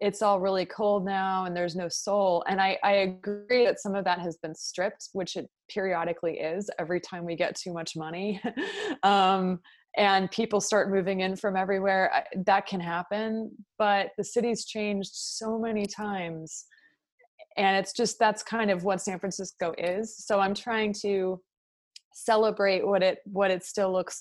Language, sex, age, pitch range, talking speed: English, female, 20-39, 180-210 Hz, 175 wpm